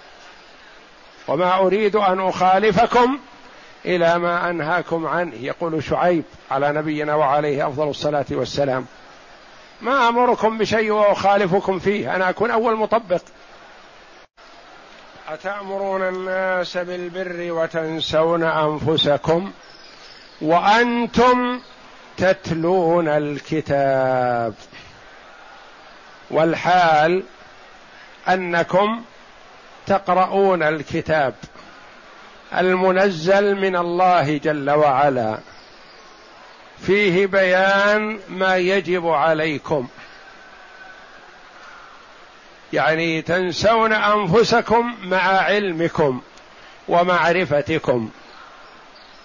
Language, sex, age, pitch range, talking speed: Arabic, male, 50-69, 155-200 Hz, 65 wpm